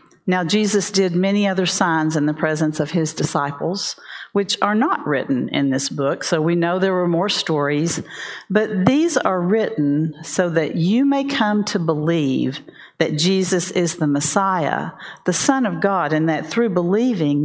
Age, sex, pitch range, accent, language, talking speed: 50-69, female, 155-195 Hz, American, English, 170 wpm